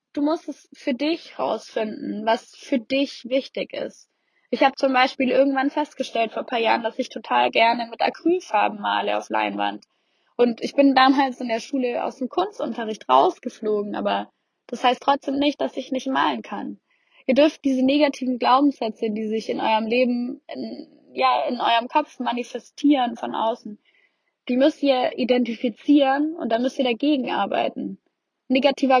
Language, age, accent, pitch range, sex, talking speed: English, 10-29, German, 230-280 Hz, female, 165 wpm